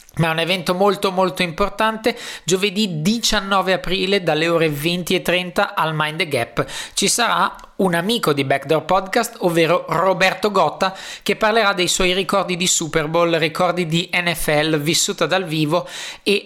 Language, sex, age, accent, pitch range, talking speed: Italian, male, 20-39, native, 145-180 Hz, 155 wpm